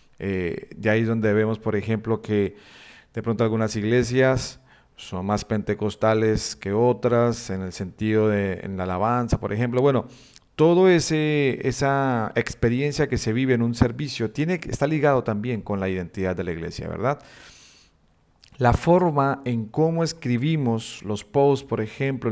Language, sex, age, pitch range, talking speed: Spanish, male, 40-59, 105-135 Hz, 145 wpm